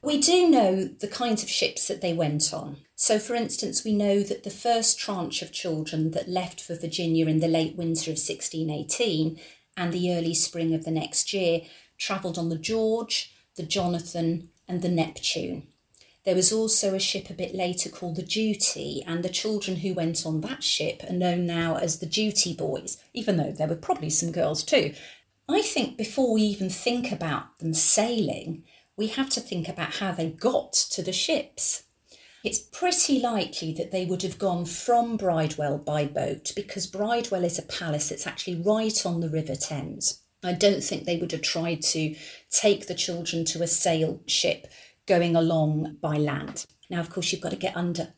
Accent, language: British, English